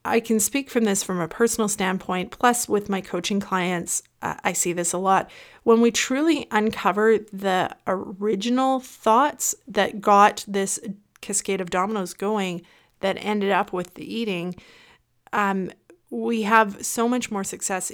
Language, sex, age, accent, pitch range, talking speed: English, female, 30-49, American, 185-225 Hz, 155 wpm